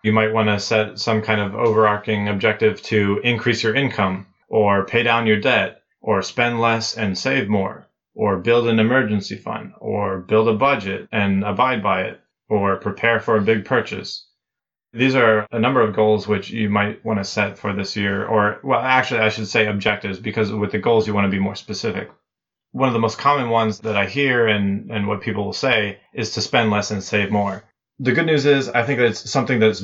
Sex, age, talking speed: male, 30-49, 215 wpm